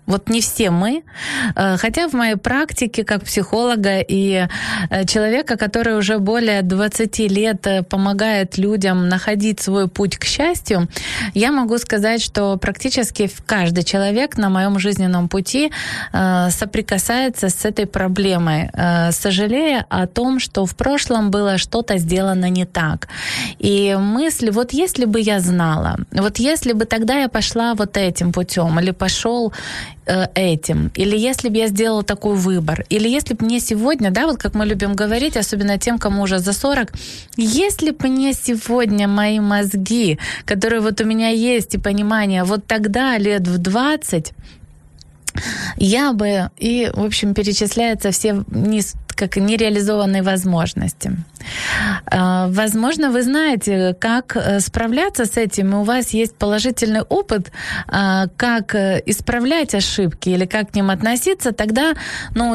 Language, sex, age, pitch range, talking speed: Ukrainian, female, 20-39, 195-235 Hz, 140 wpm